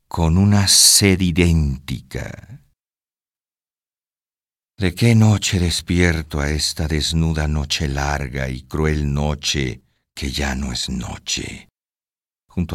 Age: 50-69